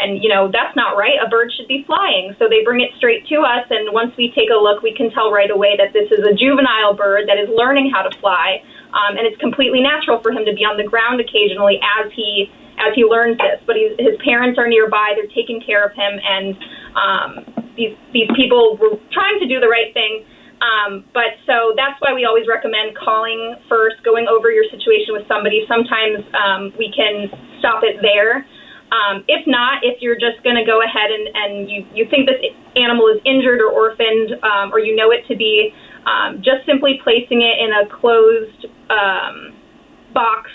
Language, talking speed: English, 210 wpm